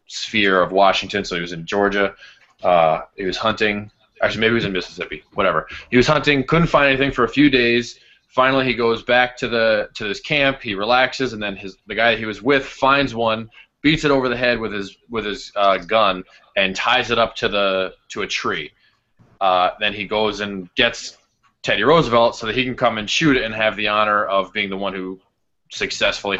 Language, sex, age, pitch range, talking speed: English, male, 20-39, 100-125 Hz, 220 wpm